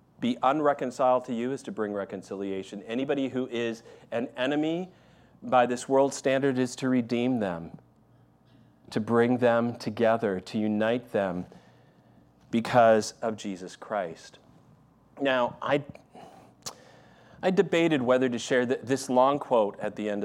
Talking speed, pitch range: 135 wpm, 110-145 Hz